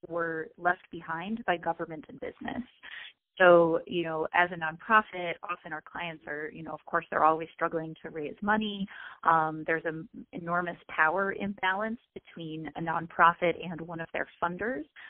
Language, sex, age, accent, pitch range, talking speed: English, female, 30-49, American, 160-195 Hz, 165 wpm